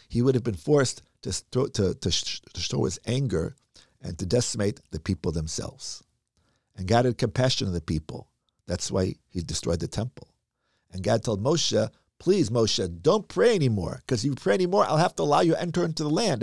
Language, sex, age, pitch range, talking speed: English, male, 50-69, 105-170 Hz, 210 wpm